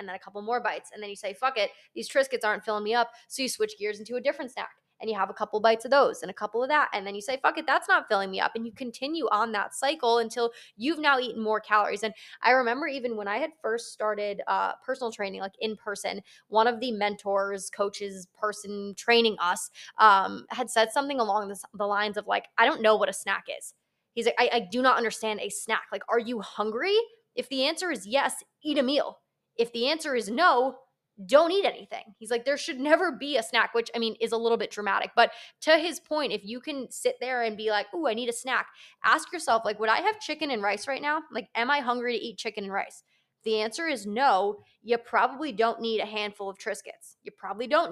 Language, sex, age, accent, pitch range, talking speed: English, female, 20-39, American, 210-260 Hz, 250 wpm